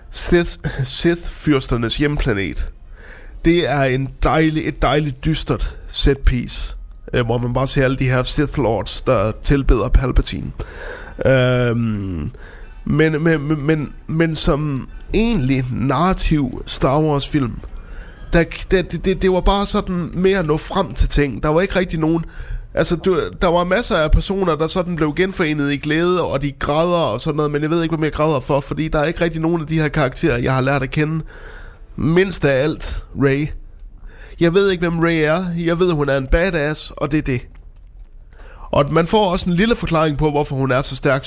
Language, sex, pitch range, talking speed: Danish, male, 125-165 Hz, 190 wpm